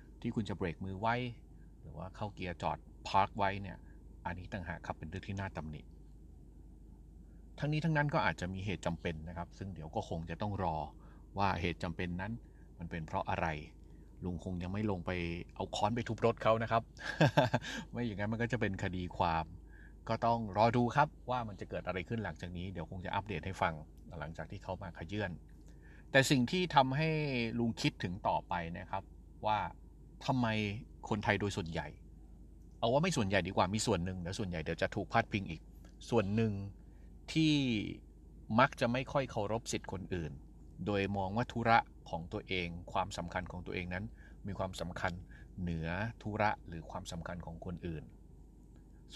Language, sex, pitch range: Thai, male, 85-110 Hz